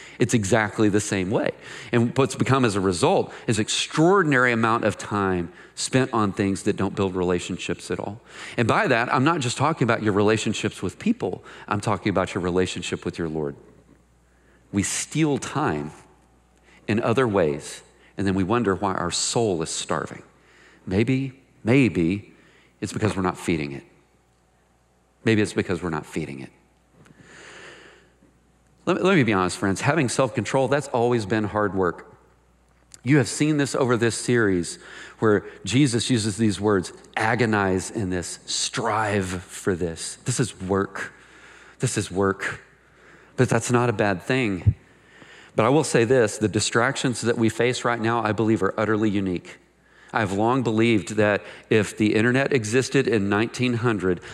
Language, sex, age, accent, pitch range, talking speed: English, male, 40-59, American, 90-120 Hz, 160 wpm